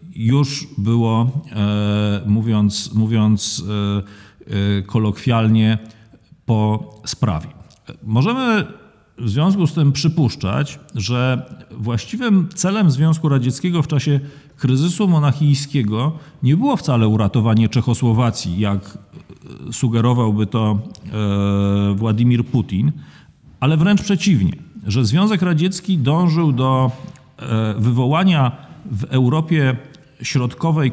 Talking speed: 85 wpm